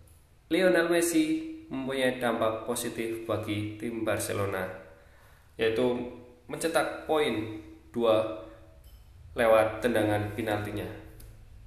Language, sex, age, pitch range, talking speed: Indonesian, male, 20-39, 105-125 Hz, 75 wpm